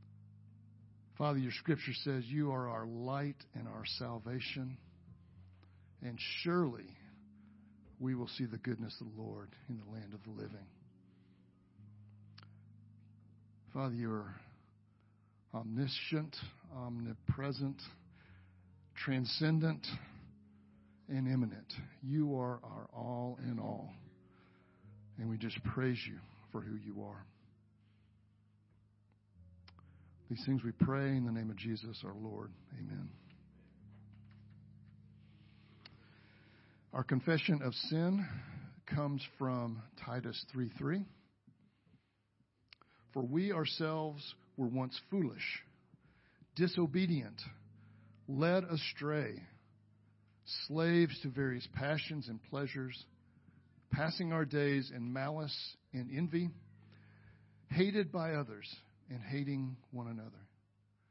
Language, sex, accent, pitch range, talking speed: English, male, American, 105-135 Hz, 100 wpm